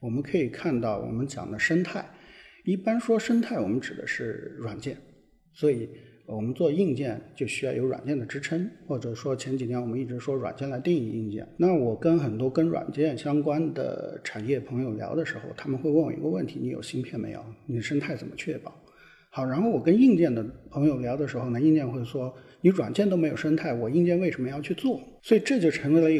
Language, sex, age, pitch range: Chinese, male, 50-69, 125-175 Hz